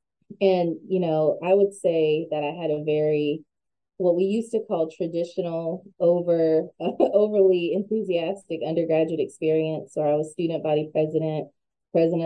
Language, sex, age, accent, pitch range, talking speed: English, female, 20-39, American, 150-175 Hz, 145 wpm